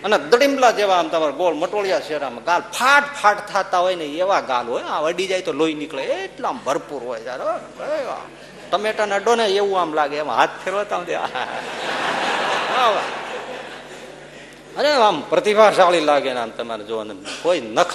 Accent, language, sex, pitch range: native, Gujarati, male, 150-225 Hz